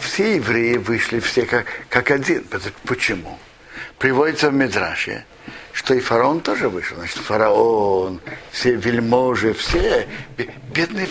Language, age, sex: Russian, 60-79, male